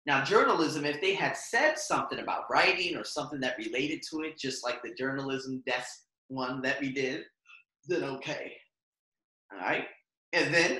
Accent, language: American, English